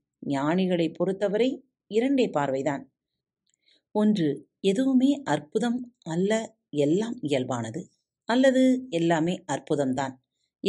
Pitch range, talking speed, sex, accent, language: 140-200 Hz, 65 wpm, female, native, Tamil